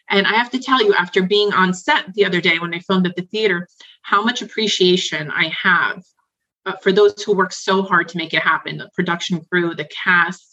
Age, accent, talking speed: 30-49, American, 220 wpm